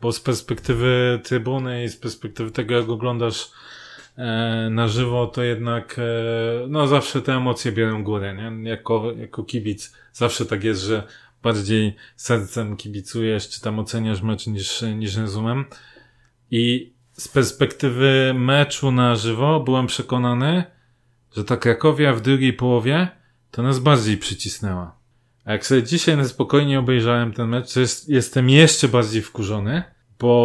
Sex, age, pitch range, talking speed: male, 30-49, 115-130 Hz, 145 wpm